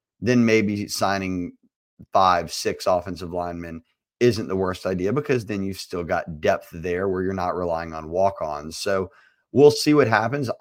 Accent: American